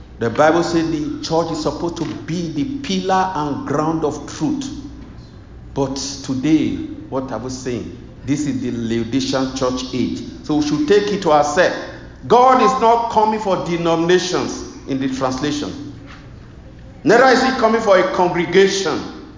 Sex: male